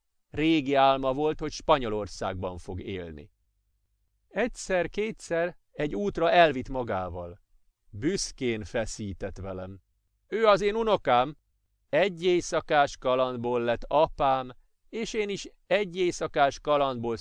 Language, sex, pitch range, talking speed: Hungarian, male, 105-165 Hz, 105 wpm